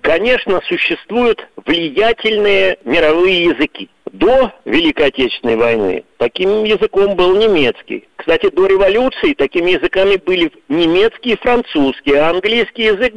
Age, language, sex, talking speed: 50-69, Russian, male, 110 wpm